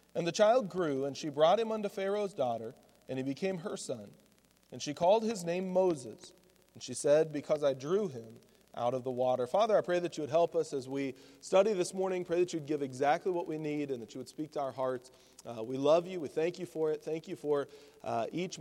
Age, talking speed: 40-59, 245 wpm